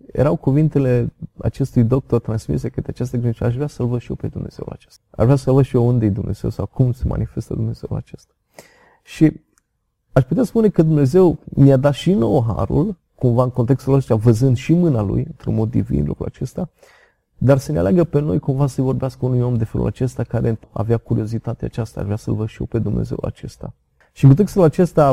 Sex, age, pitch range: male, 30-49, 110-140 Hz